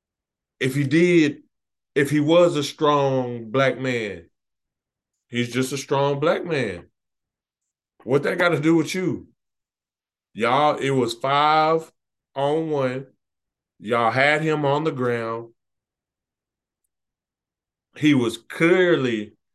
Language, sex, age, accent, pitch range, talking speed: English, male, 20-39, American, 115-145 Hz, 115 wpm